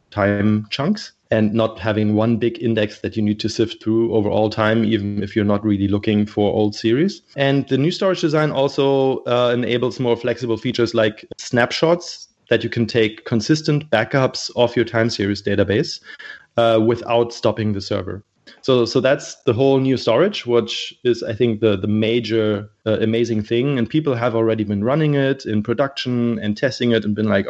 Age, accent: 30-49, German